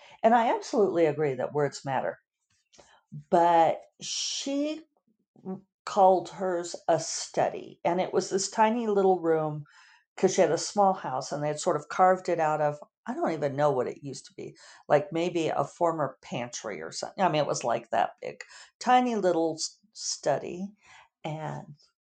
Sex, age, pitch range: female, 50-69, 160-215 Hz